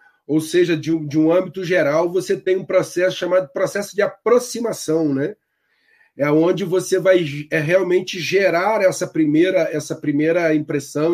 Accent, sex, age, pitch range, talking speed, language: Brazilian, male, 40-59, 160-205 Hz, 140 wpm, Portuguese